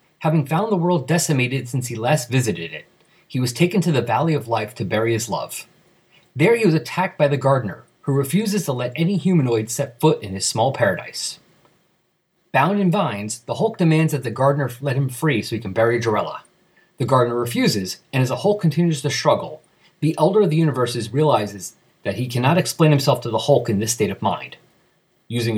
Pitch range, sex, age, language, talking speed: 120-165 Hz, male, 30-49, English, 205 wpm